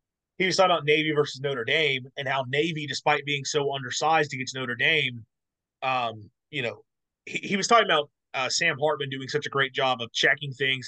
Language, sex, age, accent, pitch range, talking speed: English, male, 30-49, American, 125-155 Hz, 205 wpm